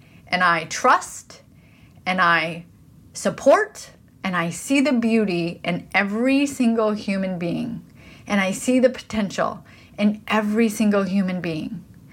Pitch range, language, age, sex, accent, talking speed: 195-245 Hz, English, 30-49, female, American, 130 wpm